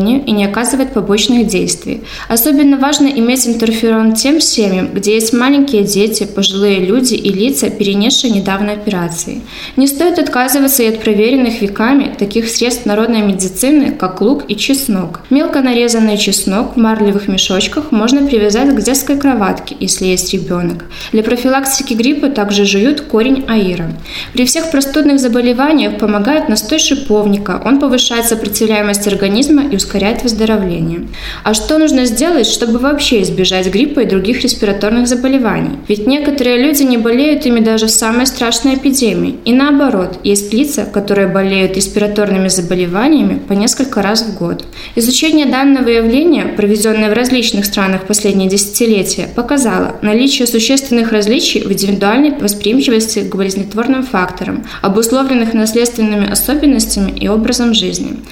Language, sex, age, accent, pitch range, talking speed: Russian, female, 10-29, native, 205-265 Hz, 135 wpm